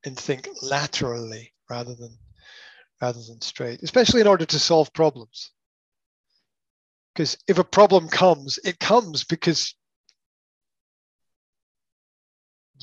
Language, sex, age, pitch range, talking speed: English, male, 30-49, 125-185 Hz, 105 wpm